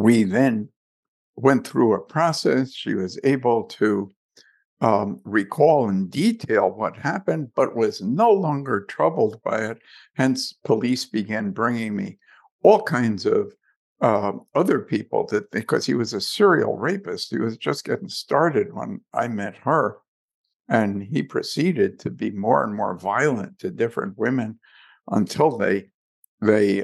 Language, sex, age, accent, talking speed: English, male, 60-79, American, 145 wpm